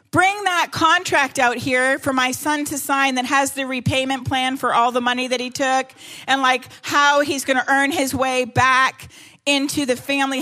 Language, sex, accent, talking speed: English, female, American, 200 wpm